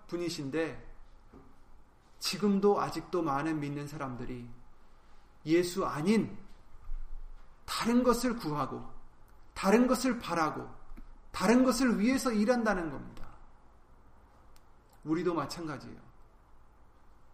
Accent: native